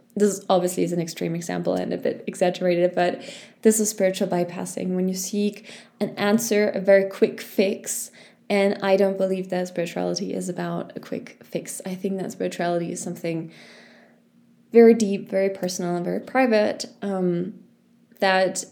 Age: 20-39